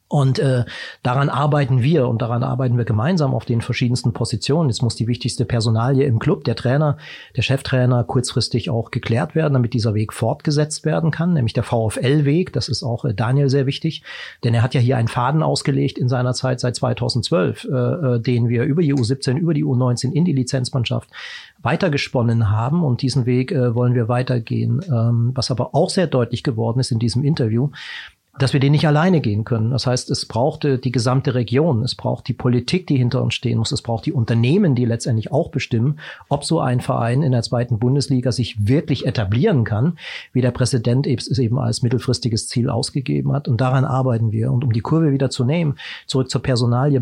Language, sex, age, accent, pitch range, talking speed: German, male, 40-59, German, 120-140 Hz, 200 wpm